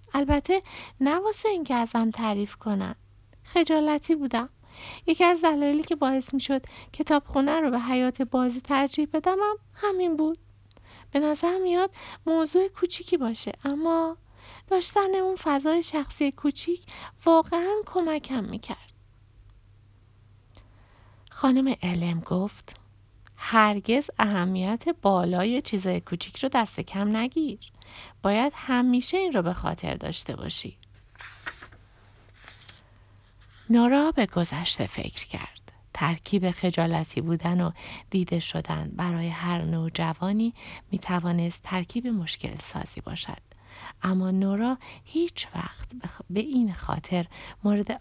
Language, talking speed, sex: Persian, 115 wpm, female